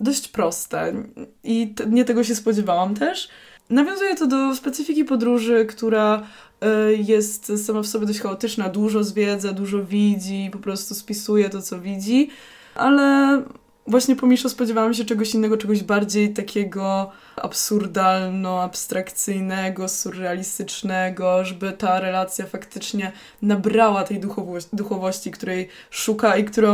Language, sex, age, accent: Polish, female, 20-39, native